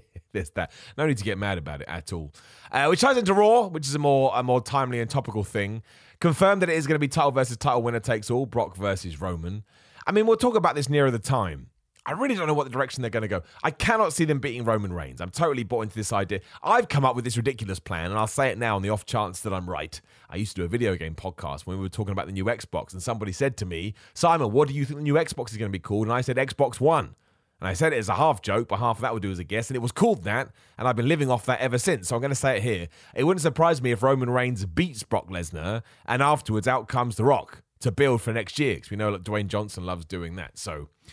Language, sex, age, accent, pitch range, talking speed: English, male, 30-49, British, 100-135 Hz, 295 wpm